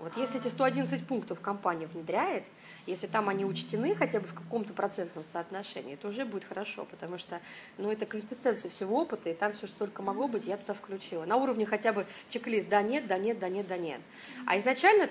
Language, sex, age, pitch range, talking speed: Russian, female, 30-49, 195-245 Hz, 195 wpm